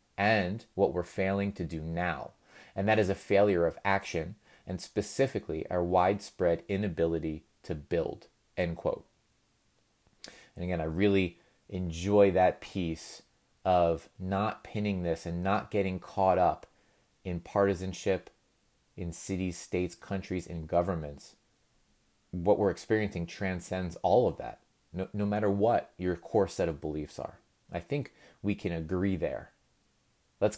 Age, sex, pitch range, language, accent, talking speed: 30-49, male, 85-100 Hz, English, American, 135 wpm